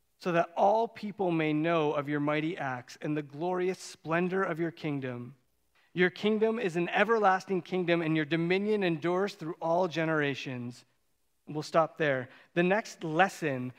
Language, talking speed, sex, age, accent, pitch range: English, 155 wpm, male, 30-49, American, 145-195 Hz